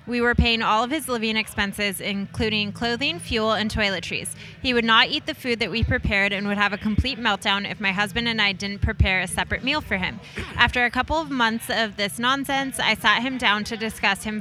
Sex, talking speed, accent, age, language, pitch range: female, 230 wpm, American, 20-39, English, 205-245 Hz